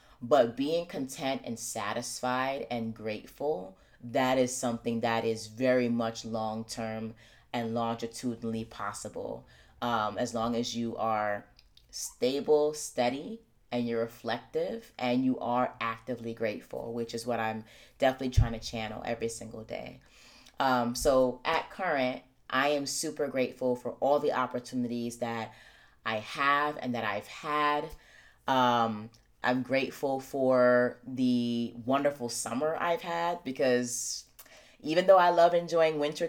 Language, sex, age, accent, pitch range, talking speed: English, female, 30-49, American, 115-150 Hz, 130 wpm